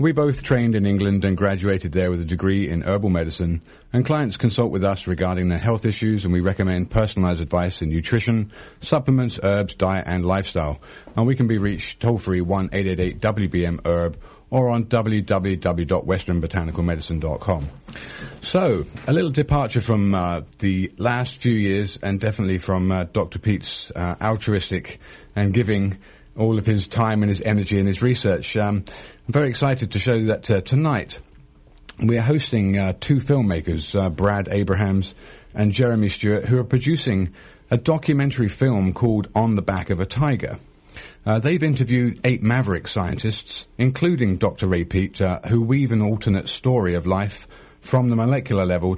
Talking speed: 160 wpm